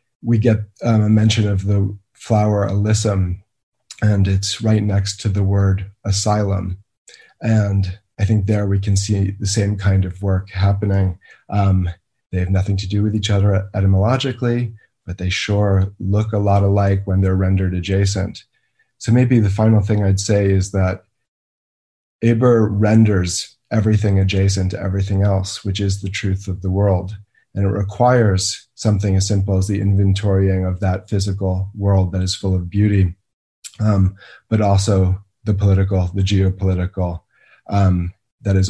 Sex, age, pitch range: male, 30-49, 95-105 Hz